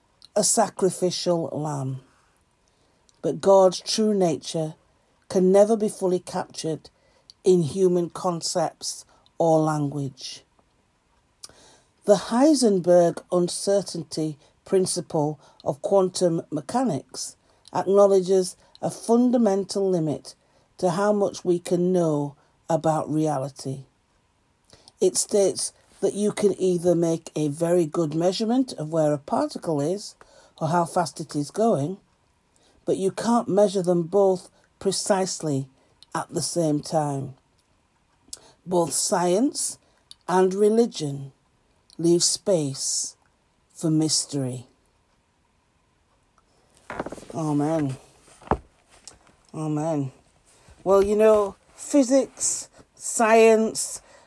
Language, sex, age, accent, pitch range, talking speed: English, female, 50-69, British, 150-200 Hz, 95 wpm